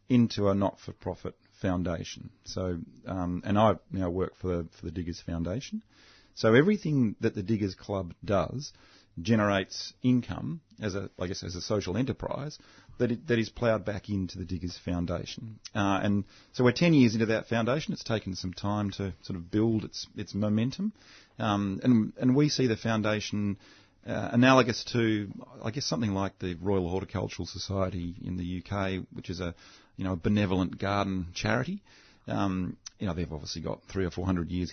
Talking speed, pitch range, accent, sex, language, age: 180 wpm, 90-115 Hz, Australian, male, English, 40-59